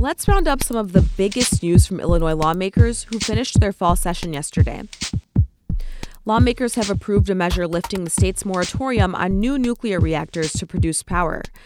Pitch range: 175-220 Hz